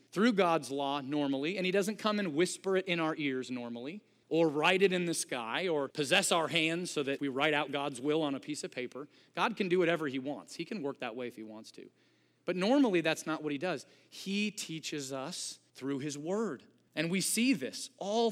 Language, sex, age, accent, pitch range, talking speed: English, male, 30-49, American, 140-200 Hz, 230 wpm